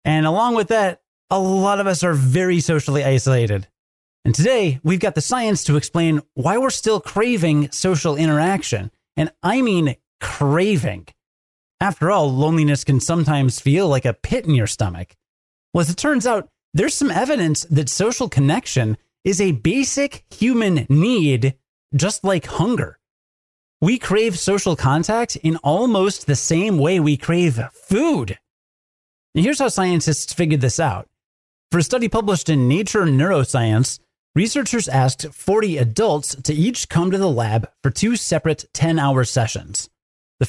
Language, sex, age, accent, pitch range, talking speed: English, male, 30-49, American, 135-195 Hz, 155 wpm